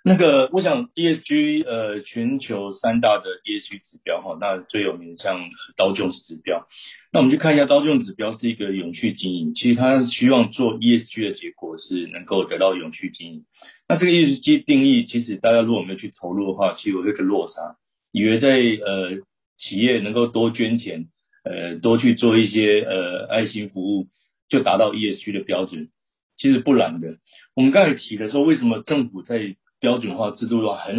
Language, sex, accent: Chinese, male, native